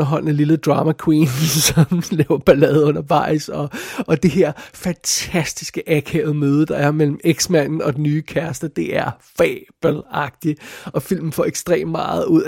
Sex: male